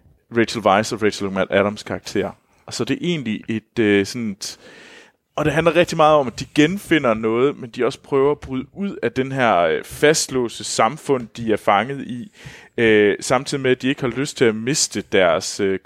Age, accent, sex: 30-49, native, male